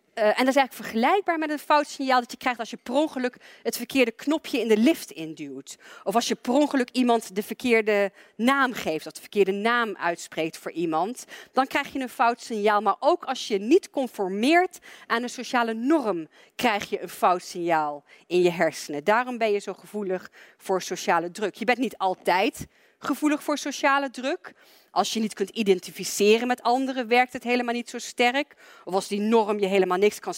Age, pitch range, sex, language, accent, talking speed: 40-59, 190-255 Hz, female, Dutch, Dutch, 200 wpm